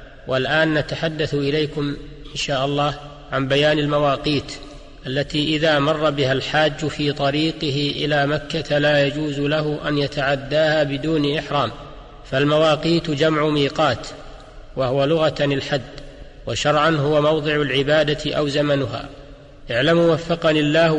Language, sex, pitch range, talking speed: Arabic, male, 145-155 Hz, 115 wpm